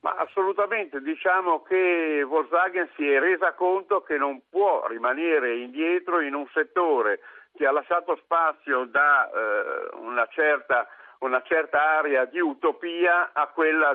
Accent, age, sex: native, 50-69, male